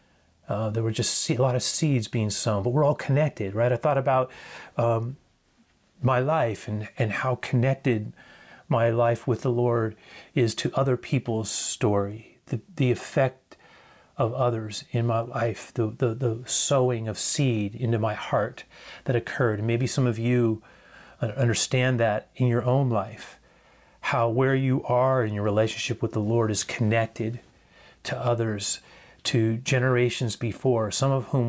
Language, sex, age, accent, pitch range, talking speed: English, male, 40-59, American, 110-130 Hz, 160 wpm